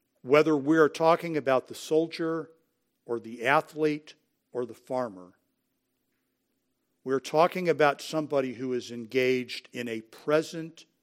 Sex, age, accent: male, 60-79, American